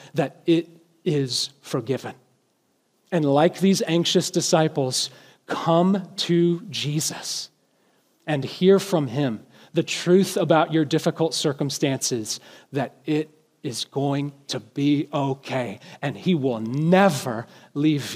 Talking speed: 110 wpm